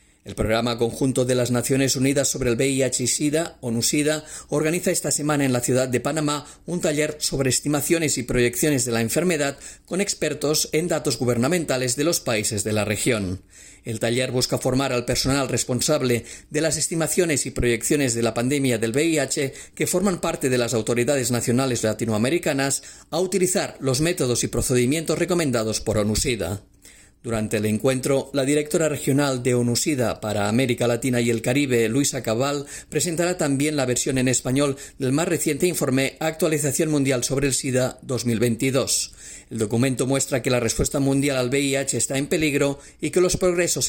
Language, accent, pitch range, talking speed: Spanish, Spanish, 120-150 Hz, 170 wpm